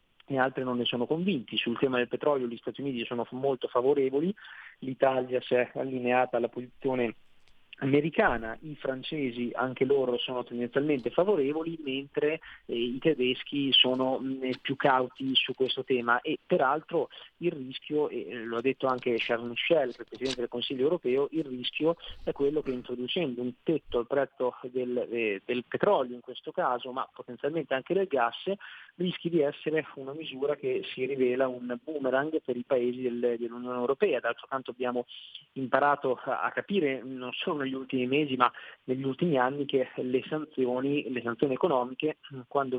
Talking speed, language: 160 wpm, Italian